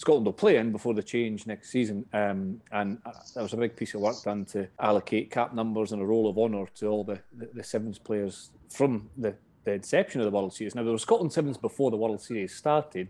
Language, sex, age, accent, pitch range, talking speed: English, male, 30-49, British, 105-130 Hz, 245 wpm